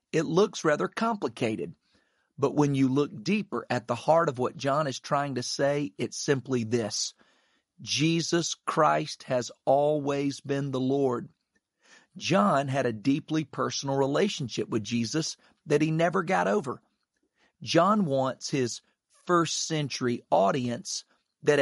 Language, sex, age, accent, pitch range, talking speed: English, male, 40-59, American, 125-160 Hz, 135 wpm